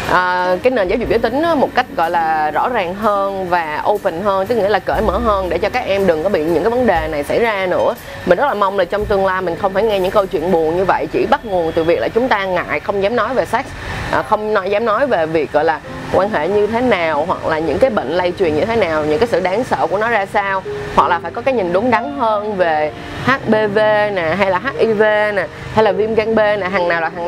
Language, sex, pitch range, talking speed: Vietnamese, female, 175-220 Hz, 275 wpm